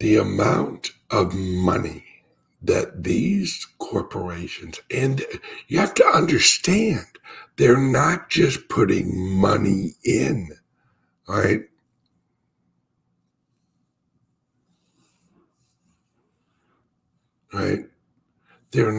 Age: 60-79